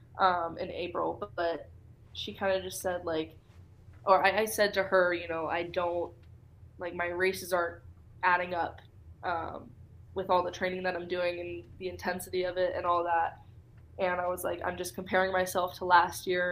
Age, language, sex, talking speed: 20-39, English, female, 195 wpm